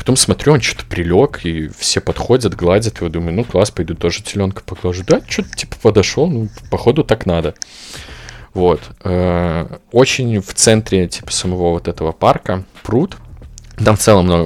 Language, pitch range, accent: Russian, 85-110 Hz, native